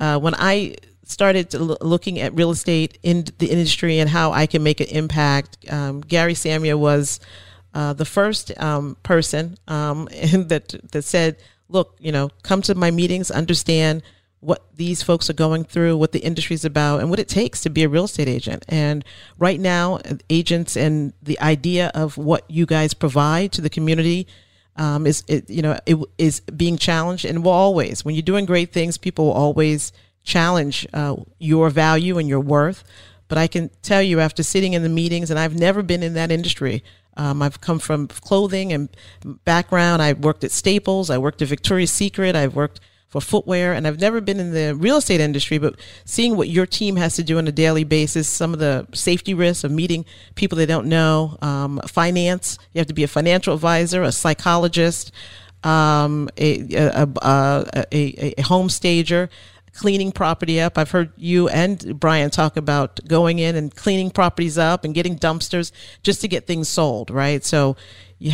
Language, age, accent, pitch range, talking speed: English, 40-59, American, 145-175 Hz, 190 wpm